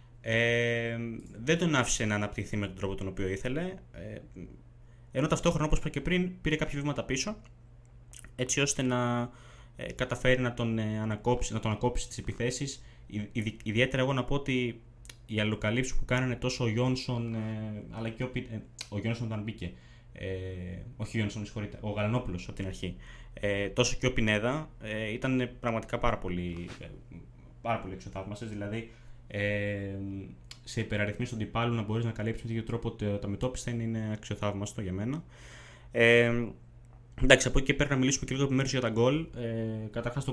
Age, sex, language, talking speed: 20-39, male, Greek, 170 wpm